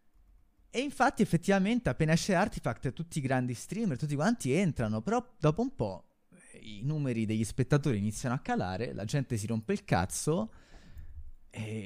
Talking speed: 155 wpm